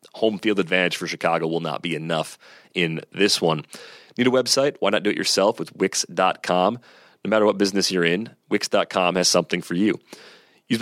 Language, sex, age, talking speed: English, male, 30-49, 190 wpm